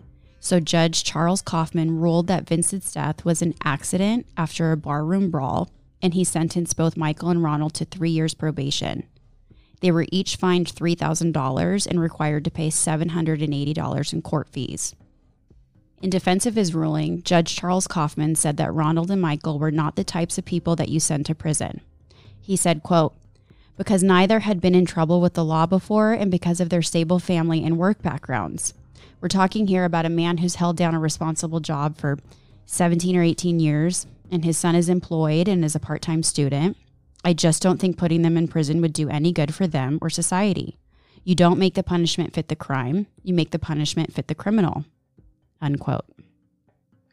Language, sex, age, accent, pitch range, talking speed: English, female, 20-39, American, 155-180 Hz, 185 wpm